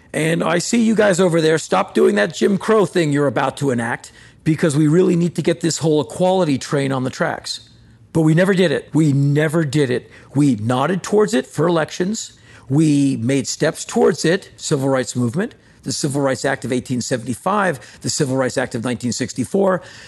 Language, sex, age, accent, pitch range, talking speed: English, male, 50-69, American, 130-170 Hz, 195 wpm